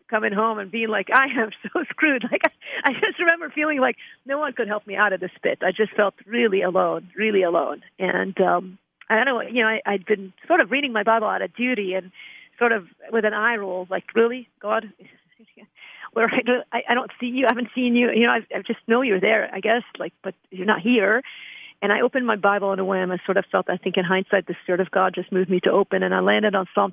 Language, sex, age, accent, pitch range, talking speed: English, female, 50-69, American, 190-245 Hz, 260 wpm